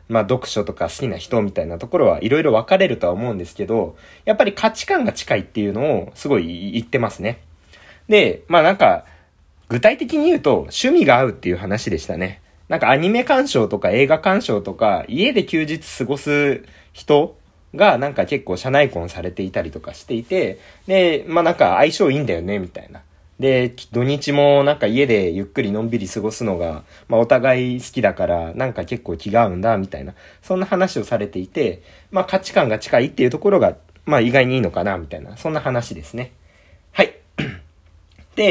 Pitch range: 95-150 Hz